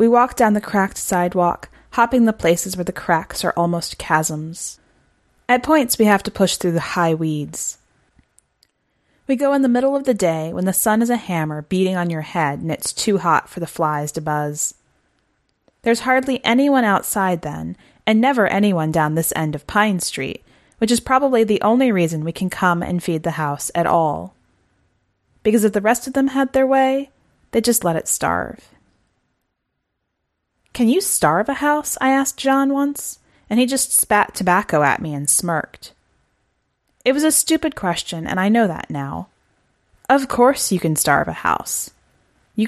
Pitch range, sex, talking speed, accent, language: 160-240 Hz, female, 185 wpm, American, English